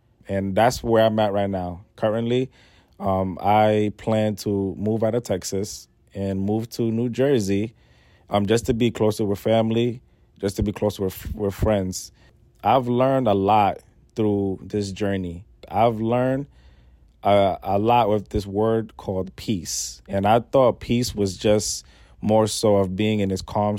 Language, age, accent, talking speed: English, 20-39, American, 165 wpm